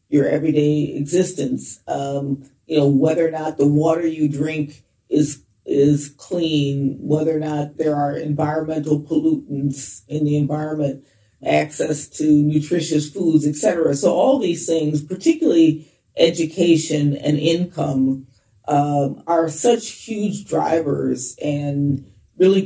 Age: 40-59